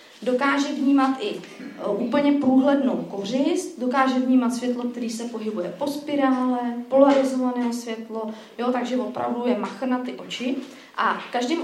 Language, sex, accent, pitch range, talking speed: Czech, female, native, 230-275 Hz, 130 wpm